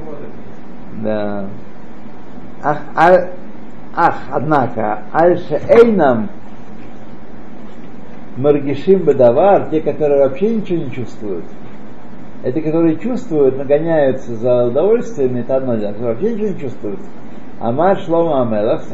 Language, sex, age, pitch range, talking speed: Russian, male, 60-79, 130-175 Hz, 100 wpm